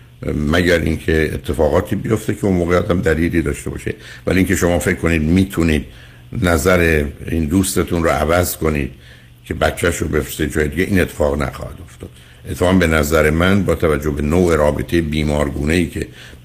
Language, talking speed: Persian, 160 wpm